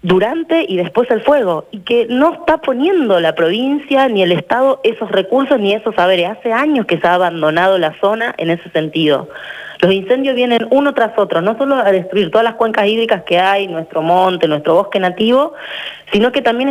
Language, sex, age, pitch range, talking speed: Spanish, female, 20-39, 165-235 Hz, 200 wpm